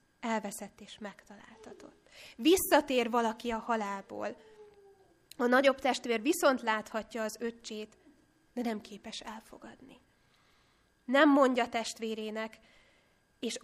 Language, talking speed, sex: Hungarian, 95 wpm, female